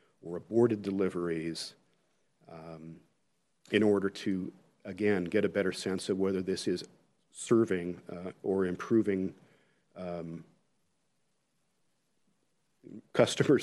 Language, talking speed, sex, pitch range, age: English, 95 wpm, male, 90-105 Hz, 50-69